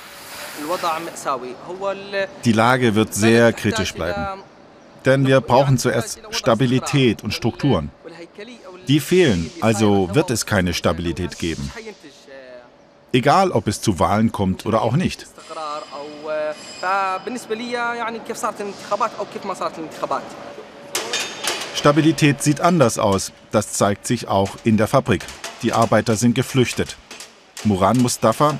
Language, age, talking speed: German, 50-69, 100 wpm